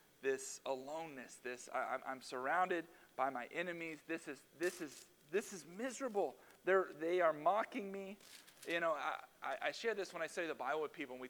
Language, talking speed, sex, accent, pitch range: English, 180 wpm, male, American, 175-235 Hz